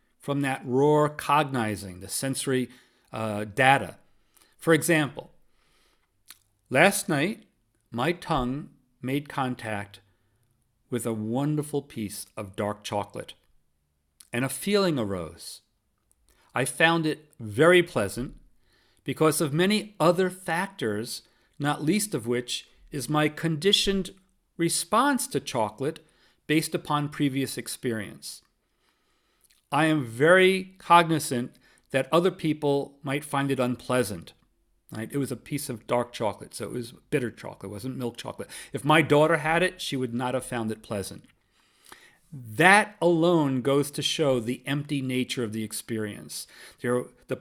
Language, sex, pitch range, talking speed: English, male, 120-160 Hz, 130 wpm